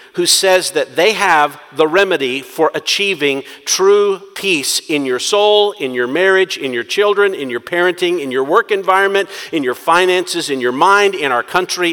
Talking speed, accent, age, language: 180 wpm, American, 50-69, English